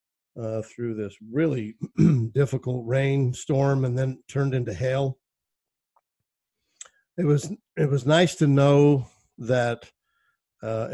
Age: 50-69